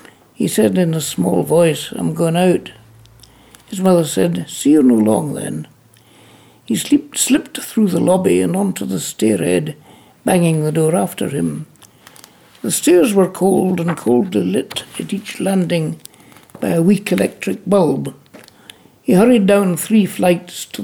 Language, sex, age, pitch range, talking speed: English, male, 60-79, 140-210 Hz, 150 wpm